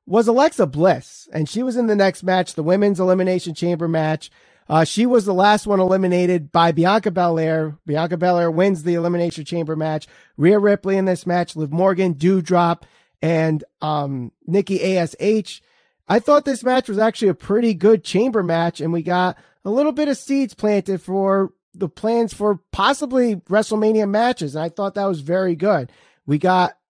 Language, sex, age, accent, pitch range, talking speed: English, male, 30-49, American, 165-205 Hz, 180 wpm